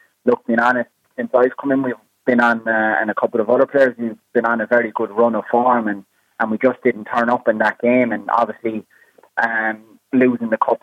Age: 20-39